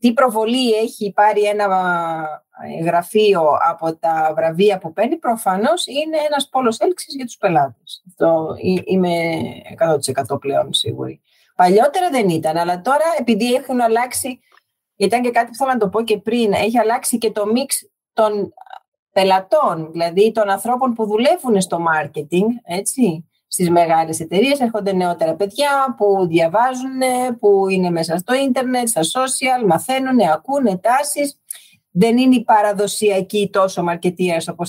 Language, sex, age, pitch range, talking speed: Greek, female, 40-59, 185-270 Hz, 140 wpm